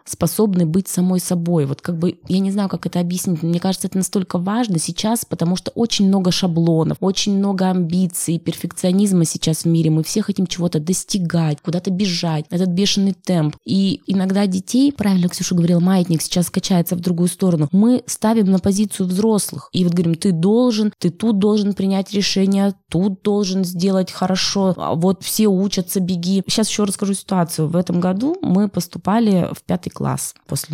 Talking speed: 175 wpm